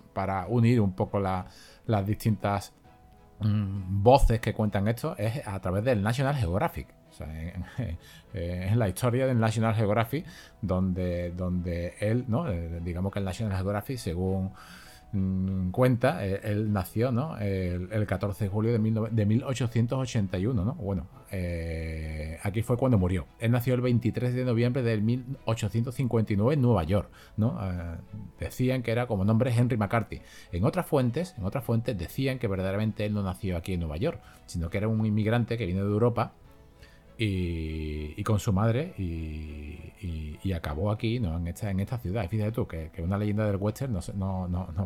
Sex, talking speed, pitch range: male, 170 wpm, 90-115 Hz